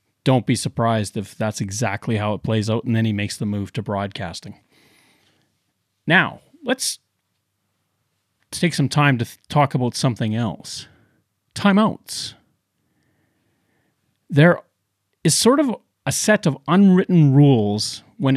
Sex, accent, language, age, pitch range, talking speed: male, American, English, 30-49, 110-165 Hz, 130 wpm